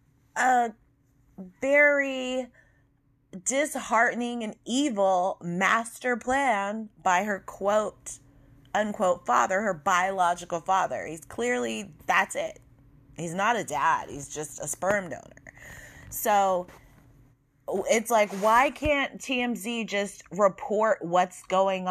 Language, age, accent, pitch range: English, 20-39, American, 165-225 Hz